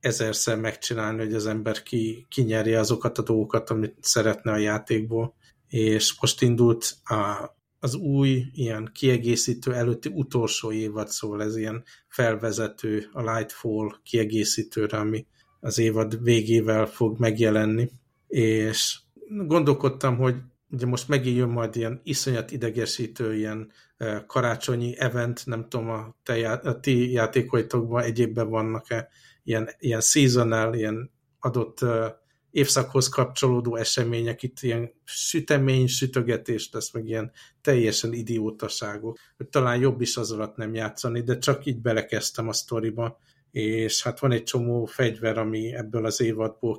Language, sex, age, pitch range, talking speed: Hungarian, male, 50-69, 110-125 Hz, 130 wpm